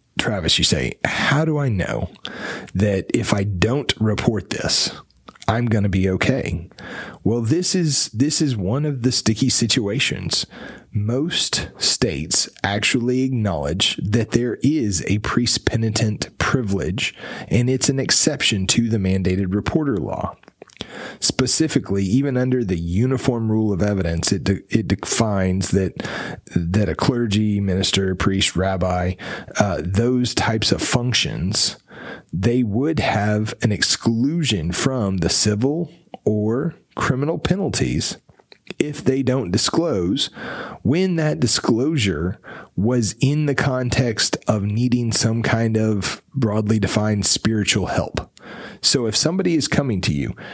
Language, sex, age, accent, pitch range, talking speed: English, male, 30-49, American, 100-130 Hz, 130 wpm